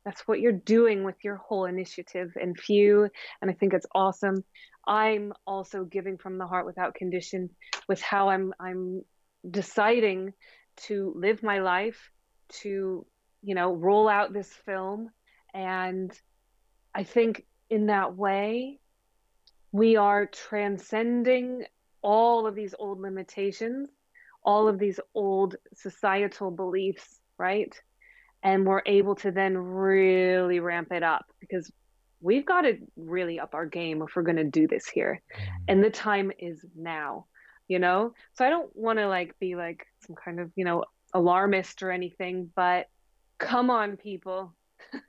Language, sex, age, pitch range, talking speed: English, female, 30-49, 185-215 Hz, 150 wpm